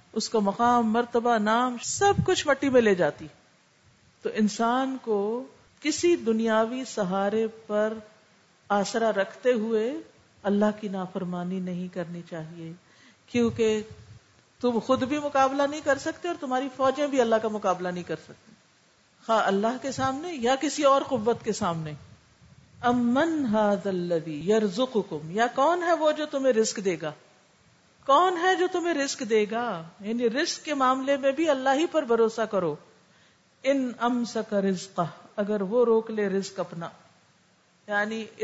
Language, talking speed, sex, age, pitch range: Urdu, 145 wpm, female, 50-69, 205-275 Hz